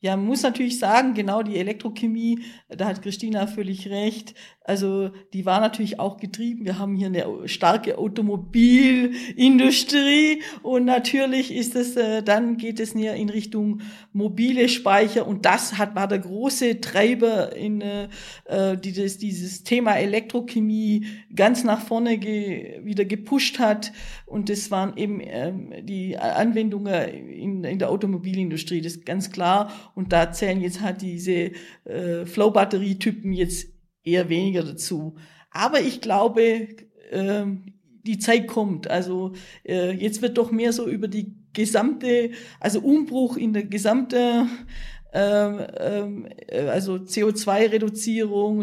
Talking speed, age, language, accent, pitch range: 140 wpm, 50-69, German, German, 195-230 Hz